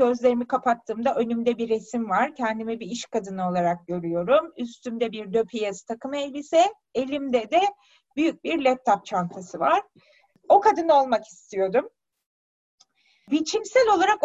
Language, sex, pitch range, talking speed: Turkish, female, 235-290 Hz, 125 wpm